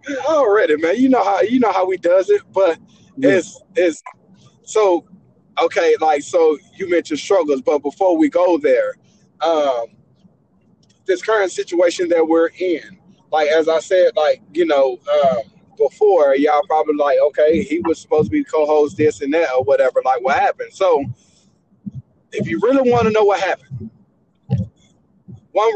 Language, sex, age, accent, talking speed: English, male, 20-39, American, 165 wpm